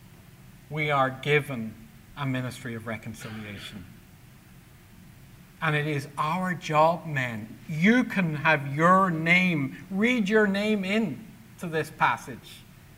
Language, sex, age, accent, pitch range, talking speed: English, male, 50-69, American, 125-165 Hz, 115 wpm